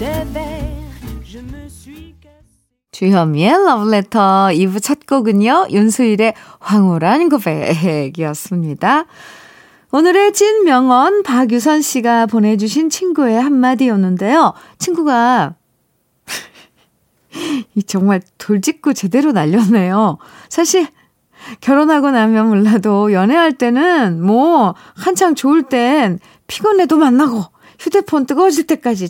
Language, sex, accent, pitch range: Korean, female, native, 180-280 Hz